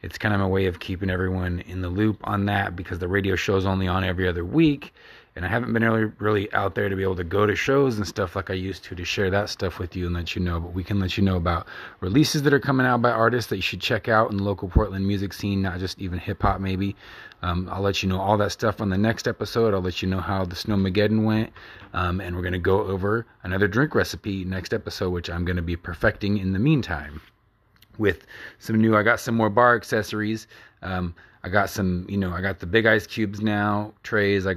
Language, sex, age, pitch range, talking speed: English, male, 30-49, 95-110 Hz, 255 wpm